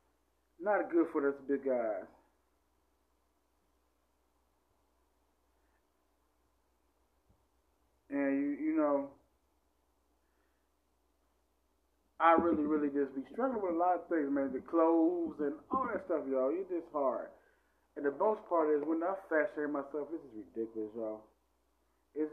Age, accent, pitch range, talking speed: 30-49, American, 115-160 Hz, 125 wpm